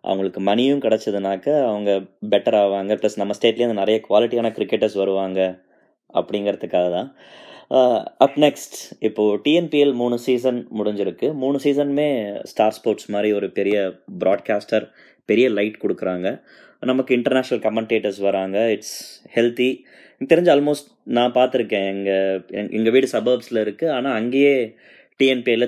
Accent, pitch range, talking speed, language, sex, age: native, 105-130 Hz, 125 wpm, Tamil, male, 20-39